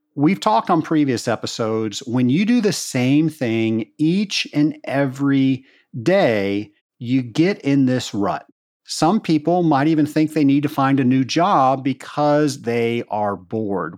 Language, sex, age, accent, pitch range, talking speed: English, male, 50-69, American, 120-155 Hz, 155 wpm